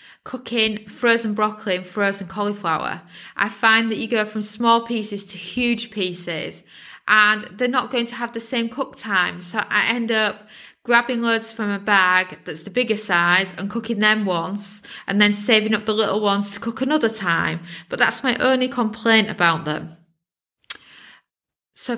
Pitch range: 185-225 Hz